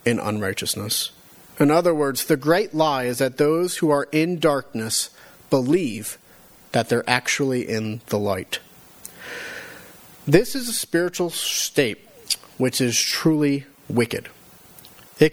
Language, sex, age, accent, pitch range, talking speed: English, male, 40-59, American, 130-175 Hz, 125 wpm